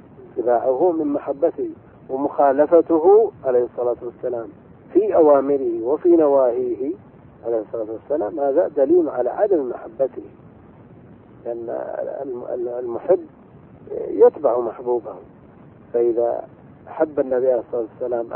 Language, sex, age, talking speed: Arabic, male, 50-69, 95 wpm